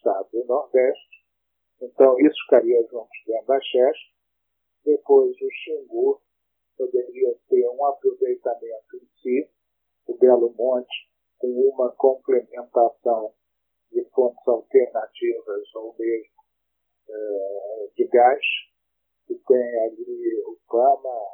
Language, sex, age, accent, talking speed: Portuguese, male, 50-69, Brazilian, 105 wpm